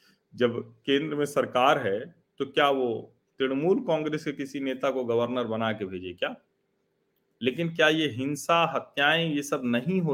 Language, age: Hindi, 40-59